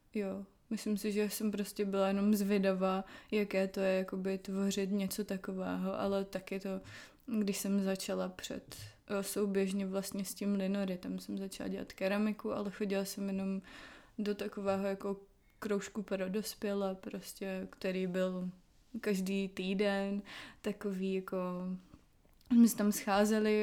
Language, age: Czech, 20-39